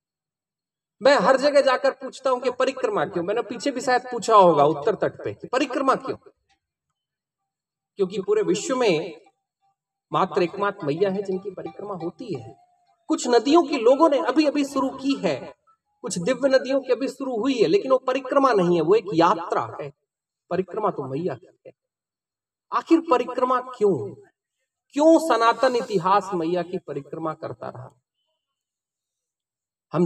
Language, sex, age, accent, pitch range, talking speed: Hindi, male, 40-59, native, 190-275 Hz, 150 wpm